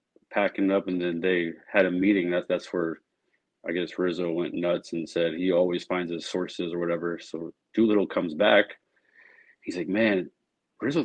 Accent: American